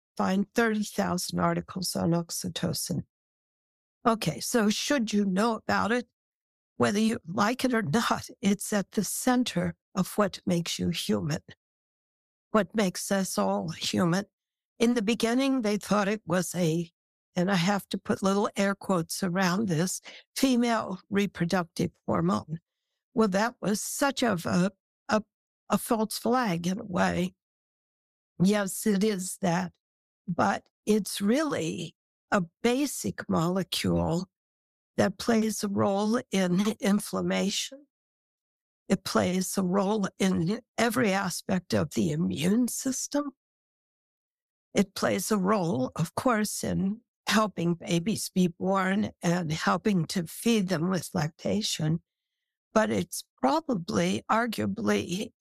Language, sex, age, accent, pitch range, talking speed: English, female, 60-79, American, 180-220 Hz, 125 wpm